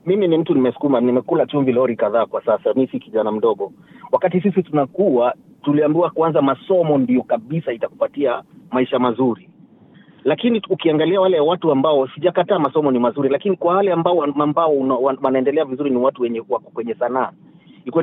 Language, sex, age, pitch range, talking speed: Swahili, male, 30-49, 135-180 Hz, 155 wpm